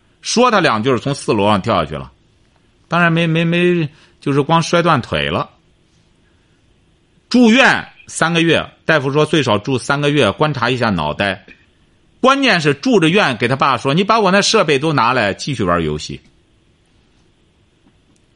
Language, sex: Chinese, male